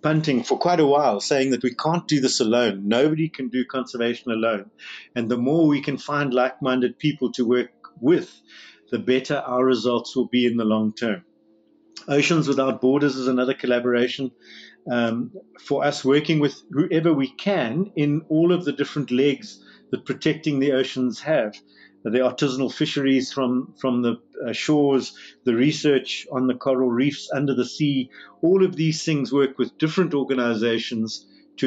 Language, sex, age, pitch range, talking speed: English, male, 50-69, 120-150 Hz, 165 wpm